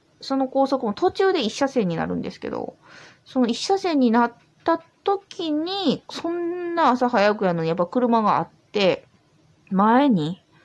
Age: 20-39